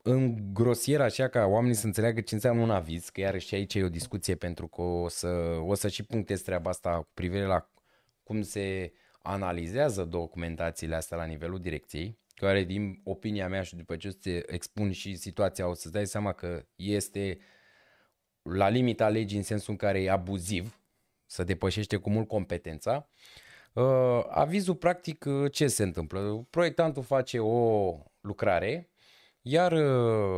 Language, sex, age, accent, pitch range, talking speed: Romanian, male, 20-39, native, 90-115 Hz, 160 wpm